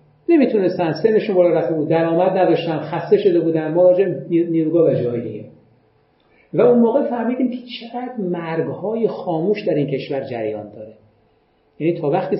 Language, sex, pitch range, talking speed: Persian, male, 140-190 Hz, 150 wpm